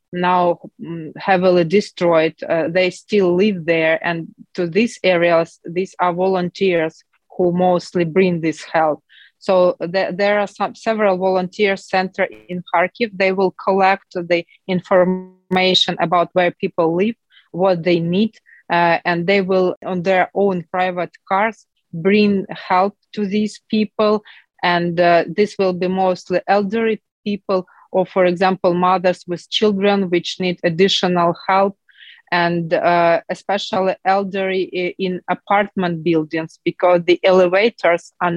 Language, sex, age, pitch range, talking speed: English, female, 30-49, 175-195 Hz, 130 wpm